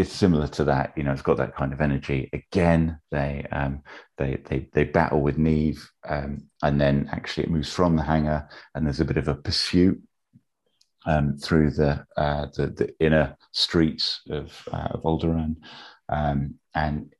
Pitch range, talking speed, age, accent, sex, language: 70-80 Hz, 180 wpm, 30-49, British, male, English